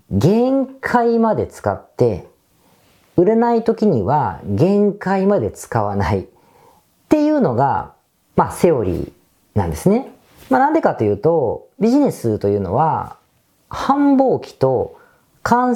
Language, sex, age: Japanese, female, 40-59